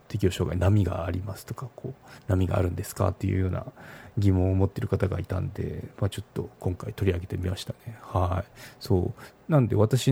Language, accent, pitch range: Japanese, native, 95-120 Hz